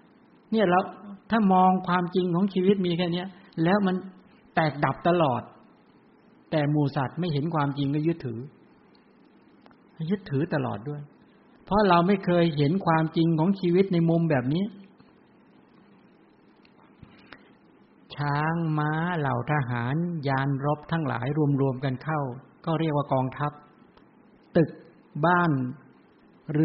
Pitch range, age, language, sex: 145-175 Hz, 60-79, English, male